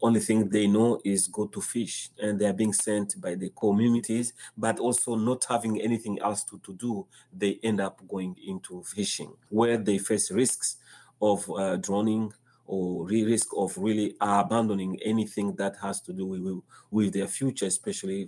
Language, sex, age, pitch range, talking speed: English, male, 30-49, 105-130 Hz, 170 wpm